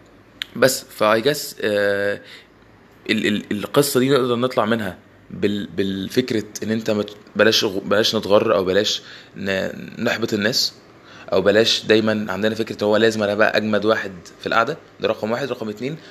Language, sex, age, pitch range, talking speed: Arabic, male, 20-39, 110-130 Hz, 140 wpm